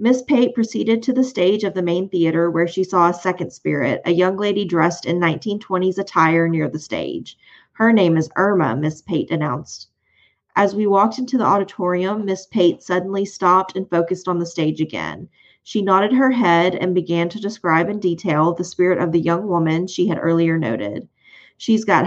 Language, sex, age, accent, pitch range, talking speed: English, female, 30-49, American, 165-200 Hz, 195 wpm